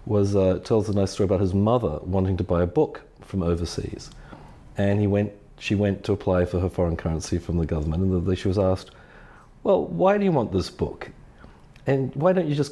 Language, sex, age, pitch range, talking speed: English, male, 40-59, 95-130 Hz, 215 wpm